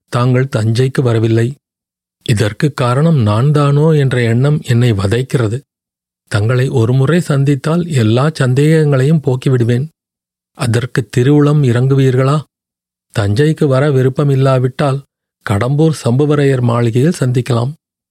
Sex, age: male, 40-59